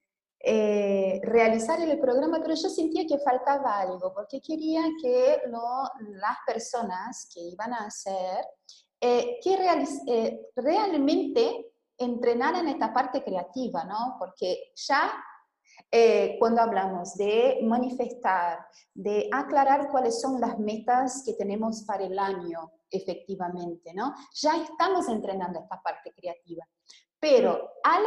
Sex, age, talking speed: female, 30-49, 125 wpm